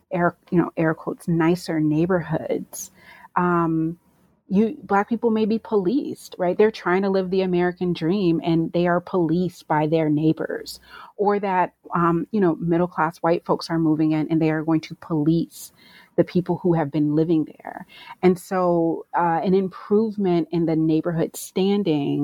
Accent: American